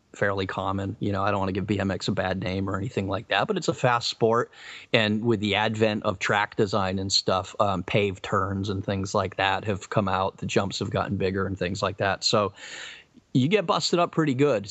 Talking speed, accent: 235 wpm, American